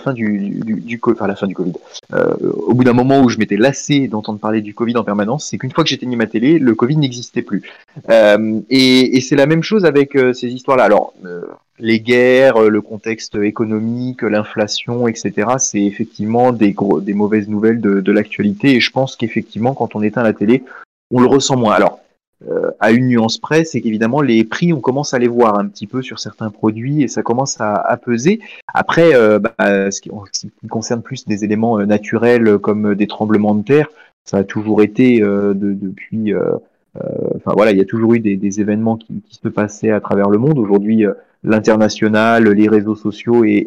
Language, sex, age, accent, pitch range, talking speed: French, male, 20-39, French, 105-125 Hz, 215 wpm